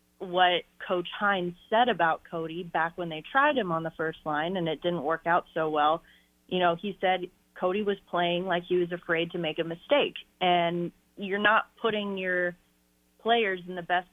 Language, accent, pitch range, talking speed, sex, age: English, American, 160-185 Hz, 195 wpm, female, 30-49